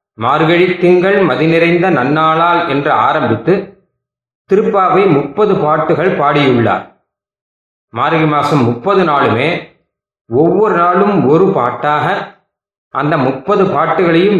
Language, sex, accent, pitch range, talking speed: Tamil, male, native, 140-190 Hz, 90 wpm